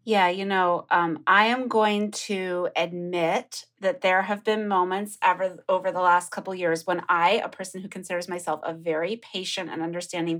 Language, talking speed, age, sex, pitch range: English, 180 wpm, 30-49, female, 170-215 Hz